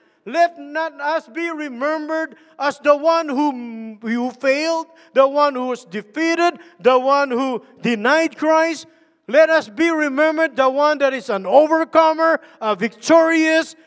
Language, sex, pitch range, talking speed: English, male, 290-325 Hz, 145 wpm